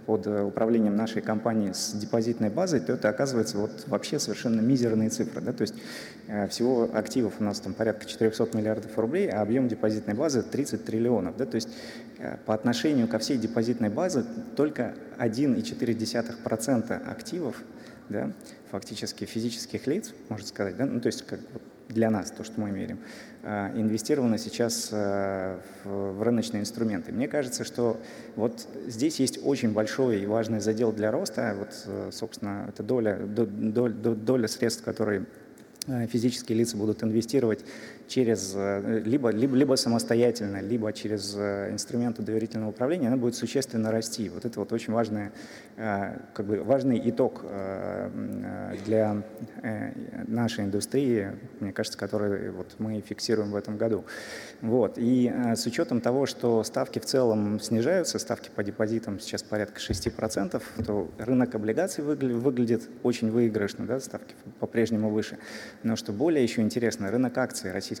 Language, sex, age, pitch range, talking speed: Russian, male, 20-39, 105-120 Hz, 135 wpm